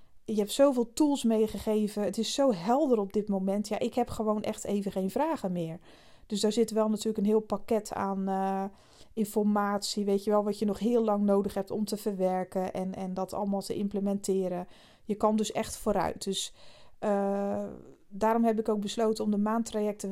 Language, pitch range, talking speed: Dutch, 195-225 Hz, 195 wpm